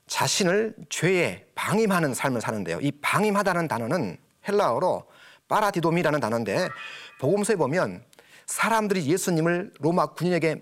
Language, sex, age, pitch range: Korean, male, 40-59, 145-195 Hz